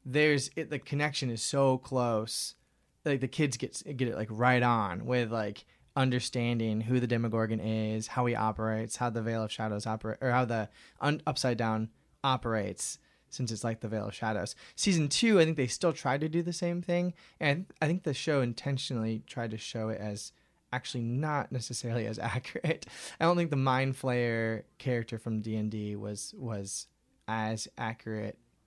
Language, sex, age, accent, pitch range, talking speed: English, male, 20-39, American, 110-135 Hz, 180 wpm